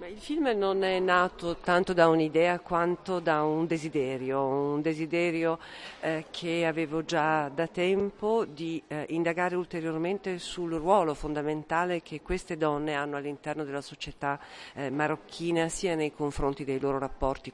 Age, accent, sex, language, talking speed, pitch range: 50-69, native, female, Italian, 145 wpm, 140-170 Hz